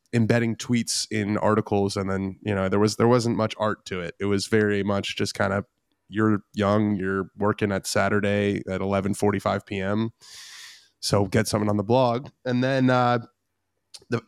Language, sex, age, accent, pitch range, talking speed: English, male, 20-39, American, 105-120 Hz, 180 wpm